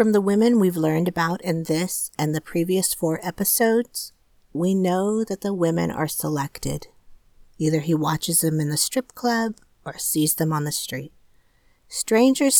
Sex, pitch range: female, 155-200 Hz